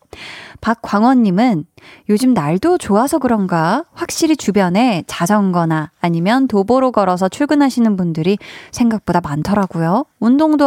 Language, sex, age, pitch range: Korean, female, 20-39, 185-260 Hz